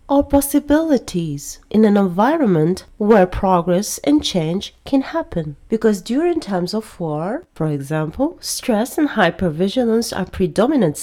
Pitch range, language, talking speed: 180-255 Hz, English, 125 wpm